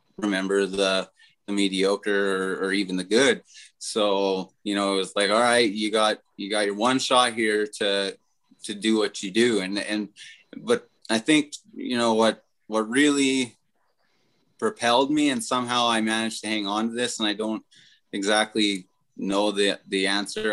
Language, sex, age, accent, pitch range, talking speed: English, male, 20-39, American, 100-115 Hz, 175 wpm